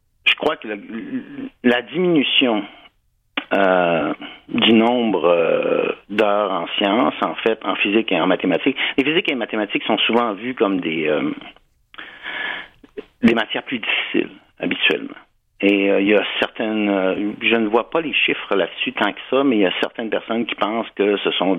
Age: 60-79